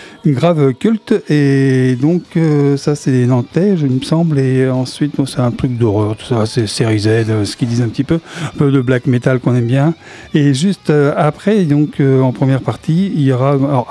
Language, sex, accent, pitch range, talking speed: French, male, French, 130-155 Hz, 235 wpm